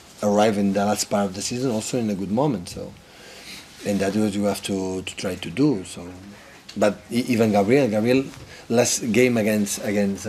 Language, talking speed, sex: English, 190 wpm, male